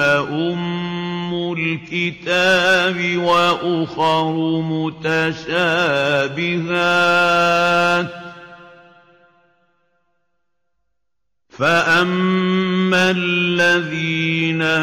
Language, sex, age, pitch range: Indonesian, male, 50-69, 160-175 Hz